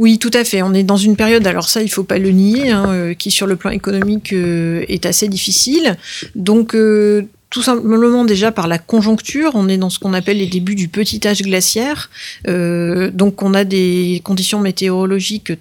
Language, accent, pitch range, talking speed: French, French, 180-210 Hz, 205 wpm